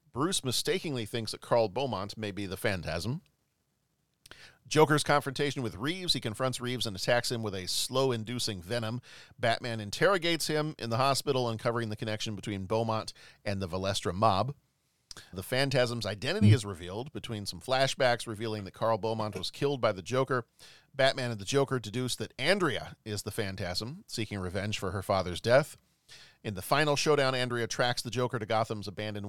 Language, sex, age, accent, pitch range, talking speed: English, male, 40-59, American, 105-130 Hz, 170 wpm